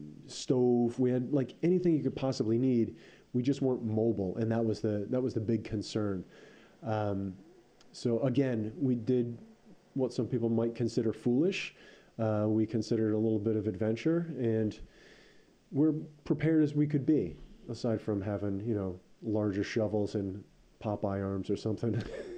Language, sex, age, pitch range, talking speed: English, male, 30-49, 110-130 Hz, 160 wpm